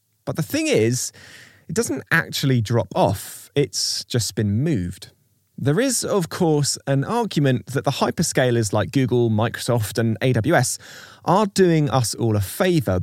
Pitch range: 100-135 Hz